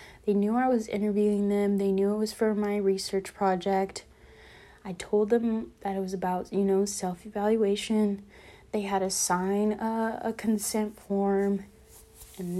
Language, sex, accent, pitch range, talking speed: English, female, American, 195-220 Hz, 155 wpm